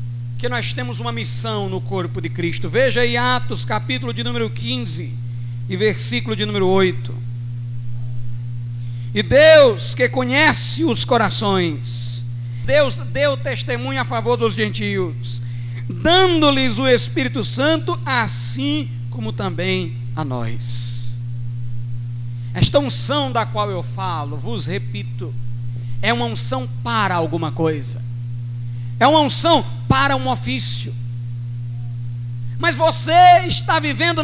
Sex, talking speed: male, 115 wpm